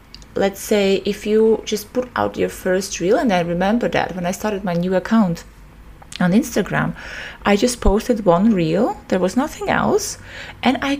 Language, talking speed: English, 180 wpm